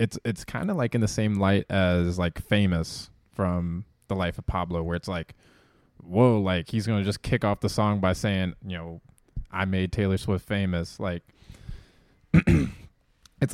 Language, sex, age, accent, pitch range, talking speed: English, male, 20-39, American, 90-110 Hz, 180 wpm